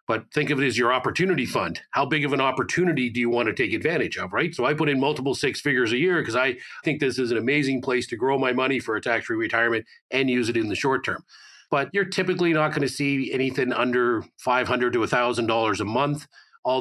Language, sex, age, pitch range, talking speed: English, male, 40-59, 115-140 Hz, 245 wpm